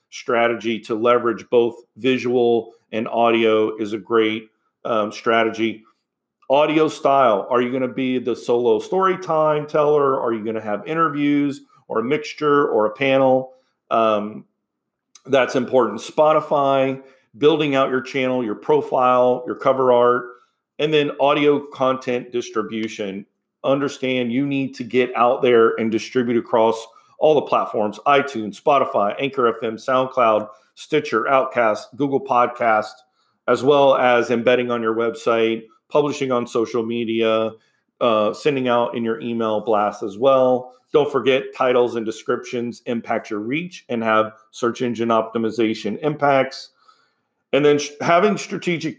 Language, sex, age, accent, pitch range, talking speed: English, male, 40-59, American, 115-140 Hz, 140 wpm